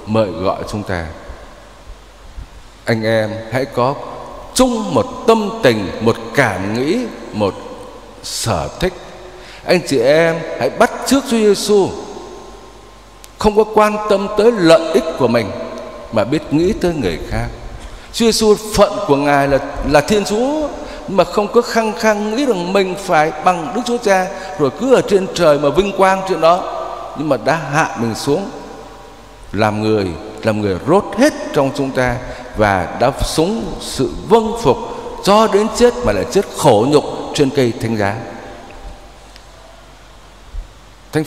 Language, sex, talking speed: Vietnamese, male, 155 wpm